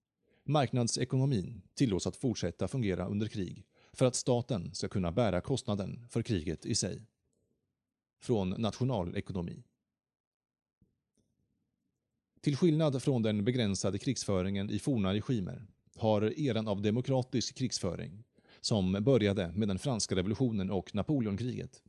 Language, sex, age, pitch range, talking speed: Swedish, male, 30-49, 95-125 Hz, 115 wpm